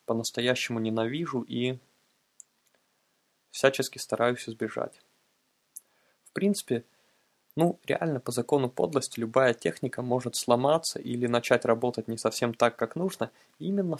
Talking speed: 110 wpm